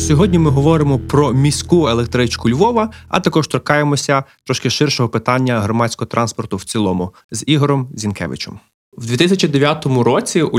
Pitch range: 110-135 Hz